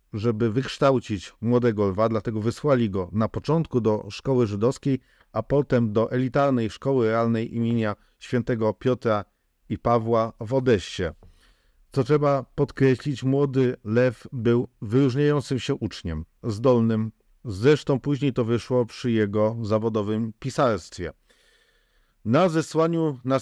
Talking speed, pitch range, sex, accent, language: 120 wpm, 110-140 Hz, male, native, Polish